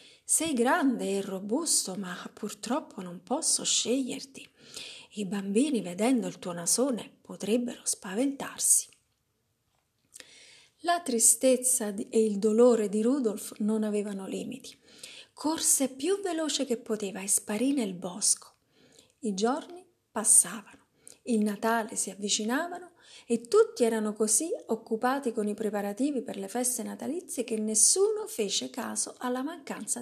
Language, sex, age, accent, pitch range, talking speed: Italian, female, 40-59, native, 210-265 Hz, 120 wpm